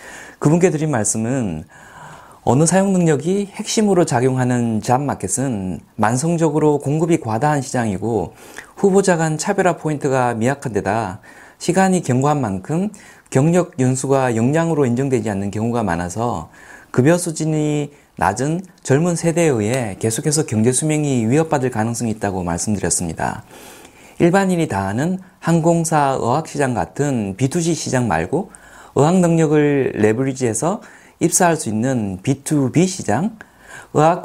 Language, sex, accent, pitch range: Korean, male, native, 110-165 Hz